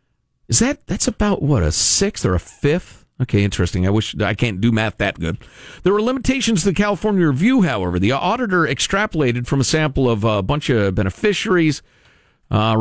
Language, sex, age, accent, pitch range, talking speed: English, male, 50-69, American, 100-145 Hz, 185 wpm